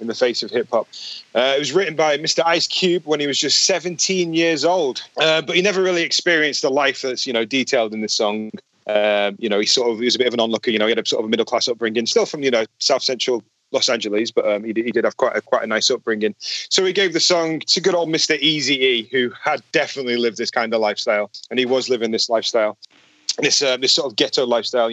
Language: English